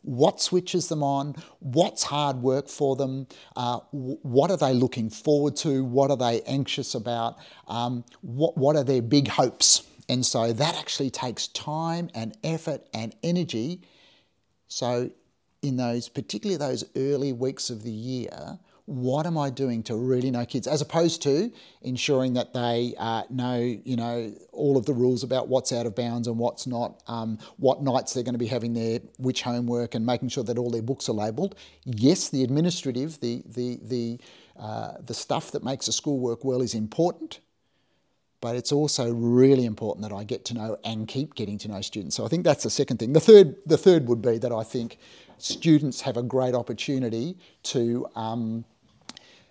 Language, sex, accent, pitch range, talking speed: English, male, Australian, 120-140 Hz, 185 wpm